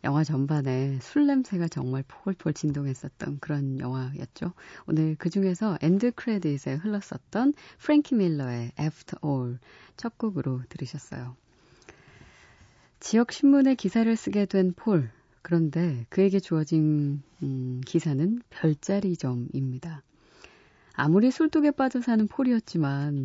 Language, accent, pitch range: Korean, native, 140-205 Hz